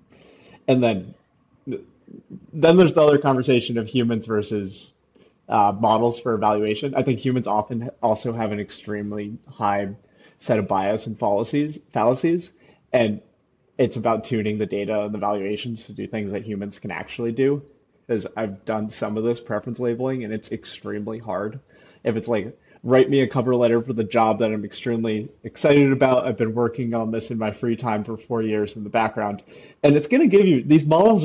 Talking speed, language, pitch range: 185 wpm, English, 110-140 Hz